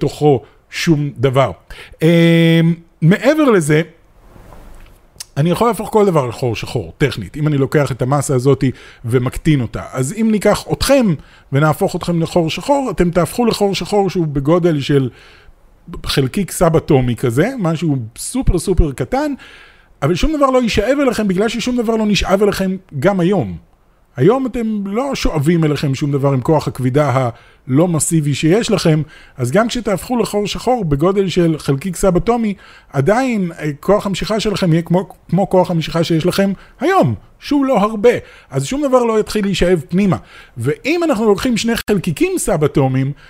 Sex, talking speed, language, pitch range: male, 150 wpm, Hebrew, 140-205 Hz